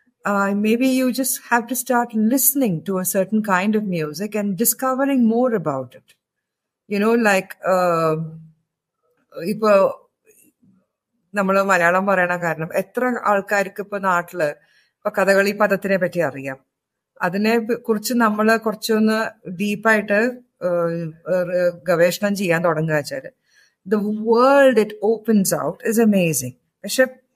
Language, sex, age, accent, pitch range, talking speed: Malayalam, female, 50-69, native, 175-220 Hz, 115 wpm